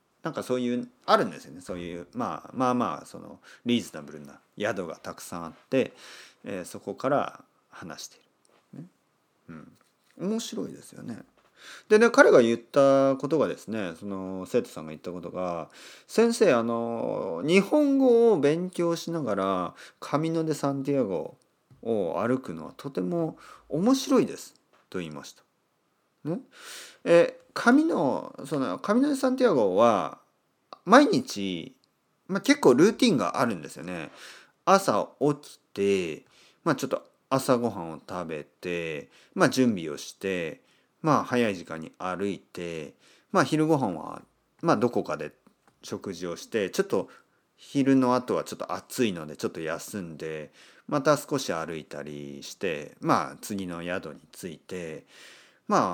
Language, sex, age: Japanese, male, 40-59